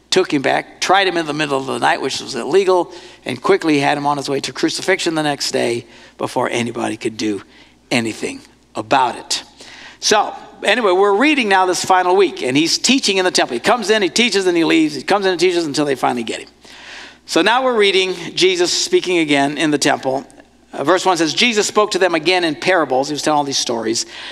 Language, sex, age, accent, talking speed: English, male, 60-79, American, 225 wpm